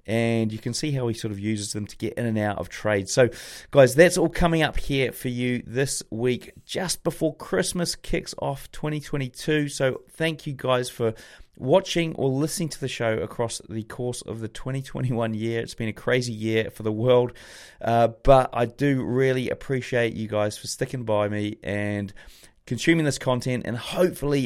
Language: English